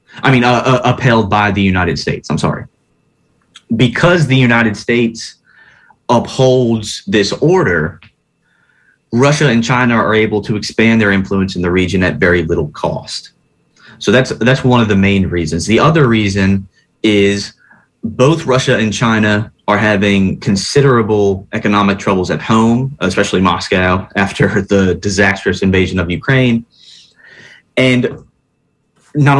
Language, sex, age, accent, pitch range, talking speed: English, male, 20-39, American, 100-120 Hz, 135 wpm